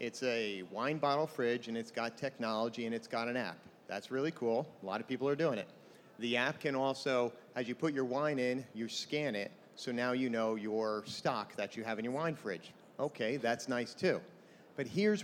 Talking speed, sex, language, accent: 220 wpm, male, English, American